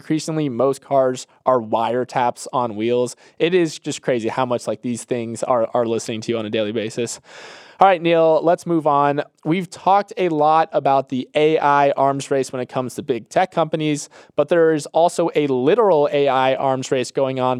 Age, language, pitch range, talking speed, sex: 20-39, English, 130-160 Hz, 195 wpm, male